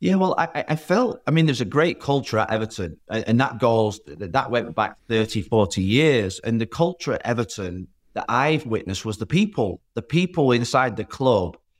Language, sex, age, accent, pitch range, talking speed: English, male, 30-49, British, 105-130 Hz, 195 wpm